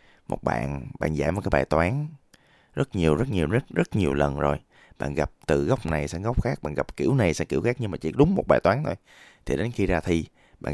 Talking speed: 255 wpm